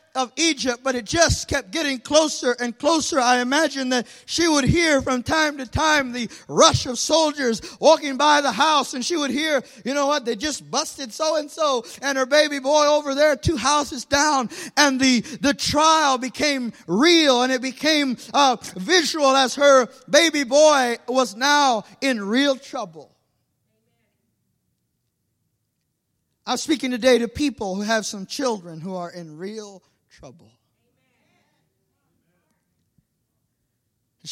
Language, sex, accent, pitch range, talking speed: English, male, American, 185-280 Hz, 145 wpm